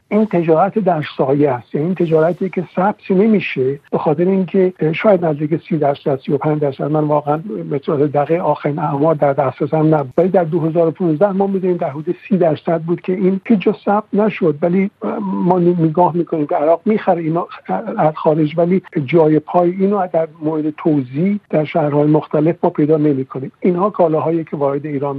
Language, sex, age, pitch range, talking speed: Persian, male, 60-79, 150-180 Hz, 170 wpm